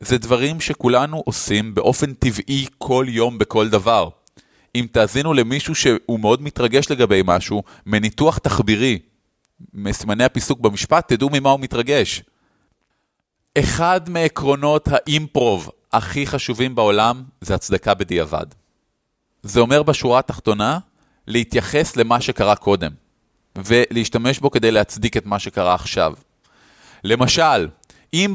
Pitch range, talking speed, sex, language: 110-140 Hz, 115 wpm, male, Hebrew